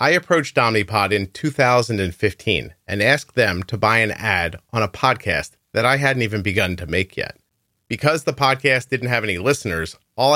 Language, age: English, 30-49